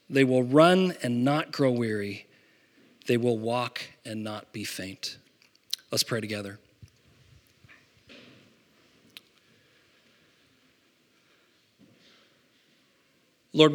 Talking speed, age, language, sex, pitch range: 80 wpm, 40-59, English, male, 125-160 Hz